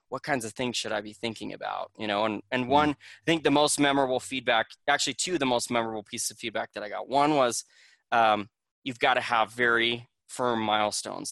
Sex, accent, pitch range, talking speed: male, American, 115-145 Hz, 225 wpm